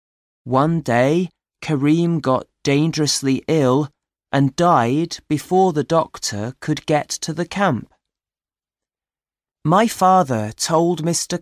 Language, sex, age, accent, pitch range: Chinese, male, 30-49, British, 120-165 Hz